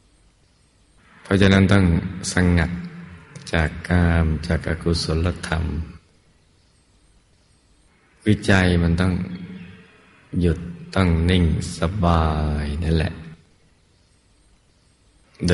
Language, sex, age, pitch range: Thai, male, 20-39, 80-95 Hz